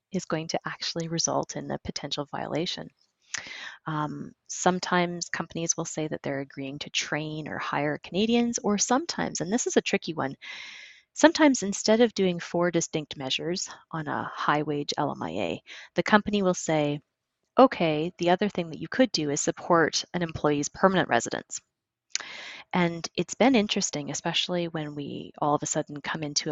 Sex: female